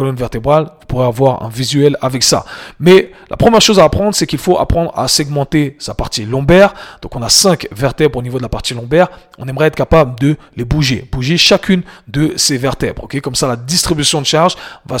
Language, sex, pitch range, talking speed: French, male, 130-170 Hz, 215 wpm